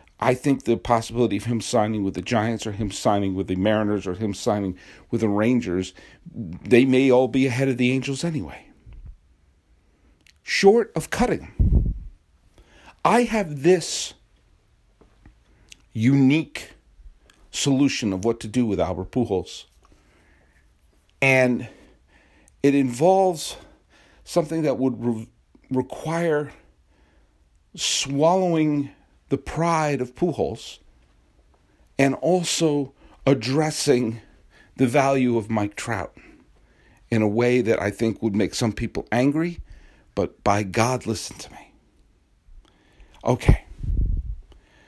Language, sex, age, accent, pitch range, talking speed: English, male, 50-69, American, 95-140 Hz, 110 wpm